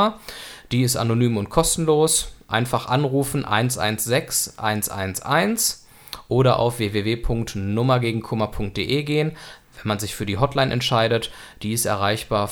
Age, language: 20-39, German